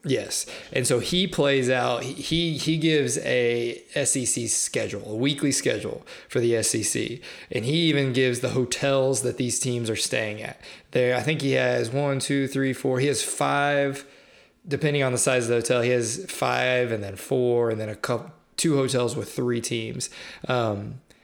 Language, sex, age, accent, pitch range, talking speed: English, male, 20-39, American, 120-135 Hz, 185 wpm